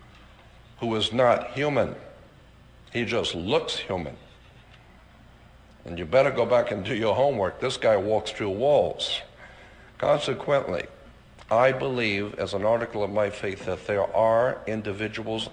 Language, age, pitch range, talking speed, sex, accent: English, 60-79, 100-115 Hz, 135 wpm, male, American